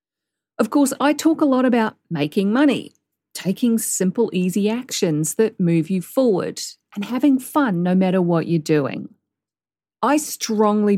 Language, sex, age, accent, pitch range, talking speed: English, female, 40-59, Australian, 185-250 Hz, 150 wpm